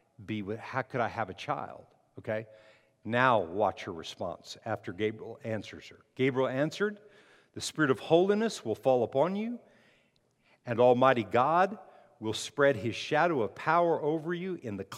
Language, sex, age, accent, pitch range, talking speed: English, male, 50-69, American, 110-160 Hz, 150 wpm